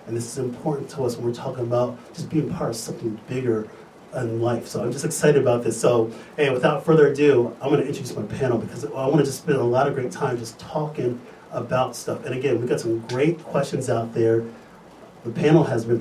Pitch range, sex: 125-165 Hz, male